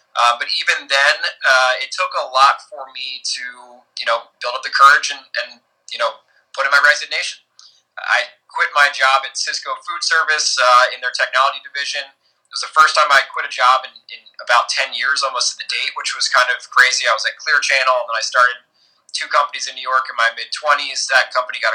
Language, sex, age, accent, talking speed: English, male, 20-39, American, 225 wpm